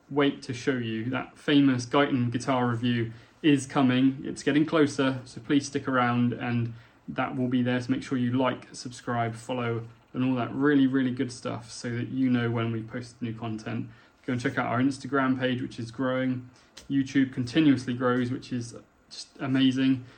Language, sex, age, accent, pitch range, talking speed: English, male, 20-39, British, 115-135 Hz, 185 wpm